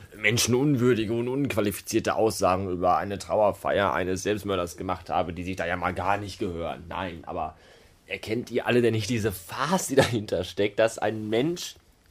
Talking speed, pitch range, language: 170 wpm, 95-120 Hz, German